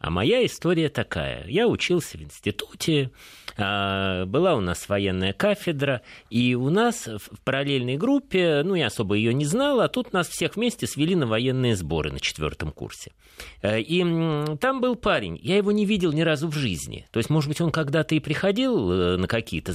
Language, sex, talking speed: Russian, male, 180 wpm